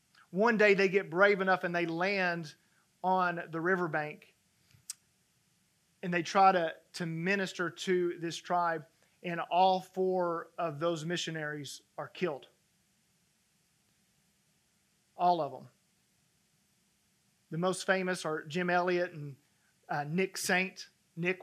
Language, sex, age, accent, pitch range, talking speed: English, male, 40-59, American, 165-185 Hz, 120 wpm